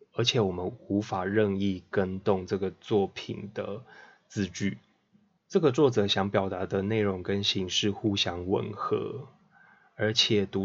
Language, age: Chinese, 20-39